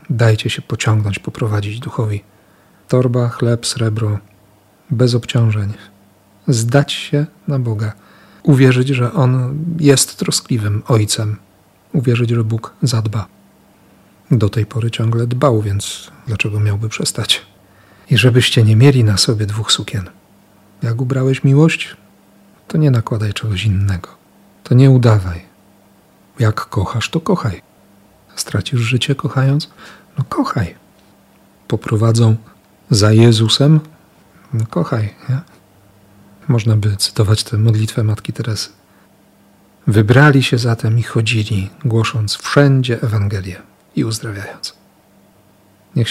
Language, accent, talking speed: Polish, native, 110 wpm